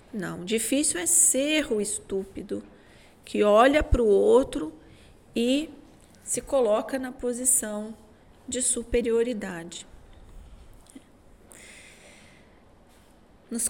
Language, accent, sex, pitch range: Portuguese, Brazilian, female, 205-250 Hz